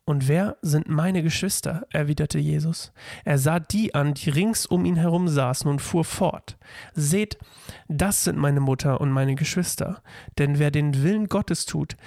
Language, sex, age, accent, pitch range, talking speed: German, male, 40-59, German, 140-175 Hz, 170 wpm